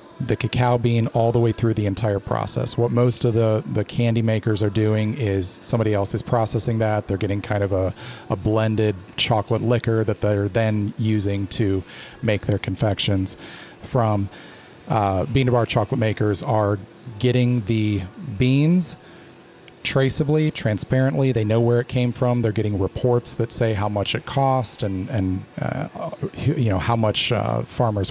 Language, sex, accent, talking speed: English, male, American, 170 wpm